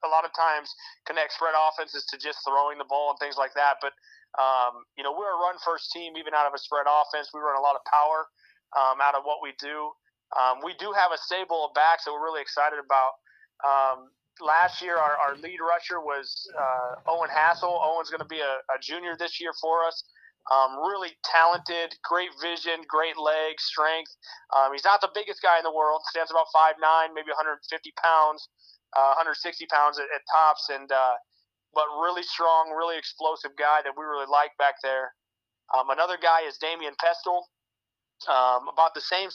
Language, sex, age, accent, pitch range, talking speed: English, male, 30-49, American, 140-170 Hz, 200 wpm